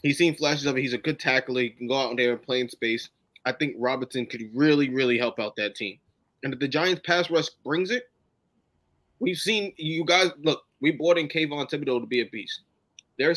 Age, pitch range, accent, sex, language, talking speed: 20-39, 125-150 Hz, American, male, English, 230 wpm